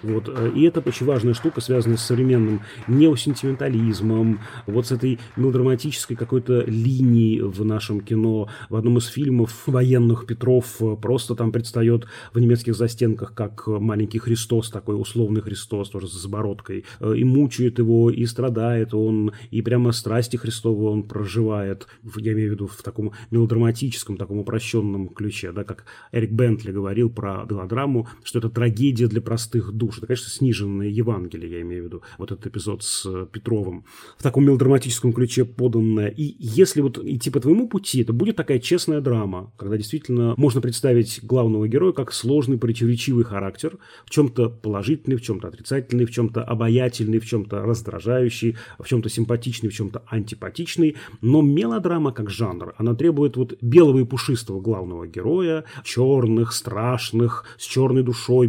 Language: Russian